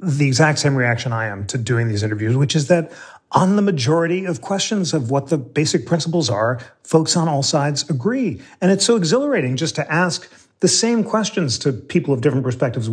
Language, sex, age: English, male, 40-59